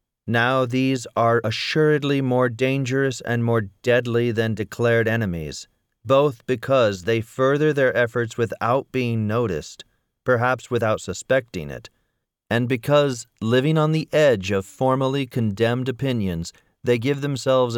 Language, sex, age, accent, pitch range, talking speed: English, male, 40-59, American, 105-130 Hz, 130 wpm